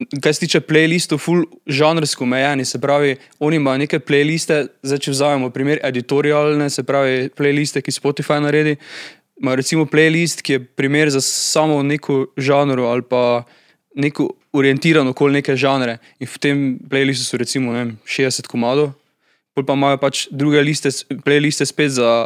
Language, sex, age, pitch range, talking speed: Slovak, male, 20-39, 130-150 Hz, 155 wpm